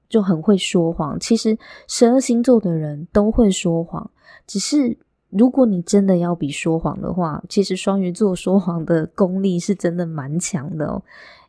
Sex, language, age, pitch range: female, Chinese, 20-39, 175-235 Hz